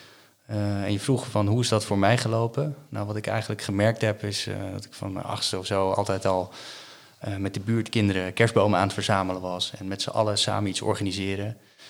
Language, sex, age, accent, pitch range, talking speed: Dutch, male, 20-39, Dutch, 100-115 Hz, 220 wpm